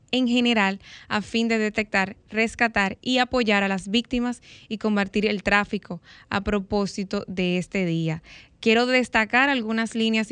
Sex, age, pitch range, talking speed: female, 10-29, 205-235 Hz, 145 wpm